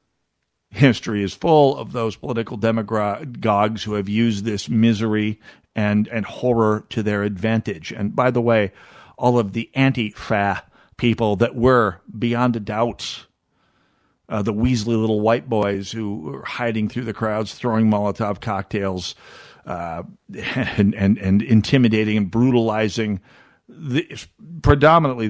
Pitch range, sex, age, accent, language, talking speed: 105-125 Hz, male, 50-69, American, English, 135 wpm